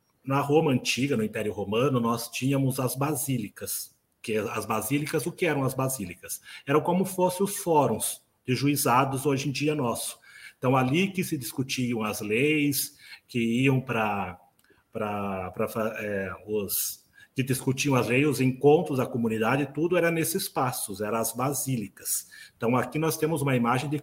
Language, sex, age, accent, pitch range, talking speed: Portuguese, male, 40-59, Brazilian, 120-155 Hz, 160 wpm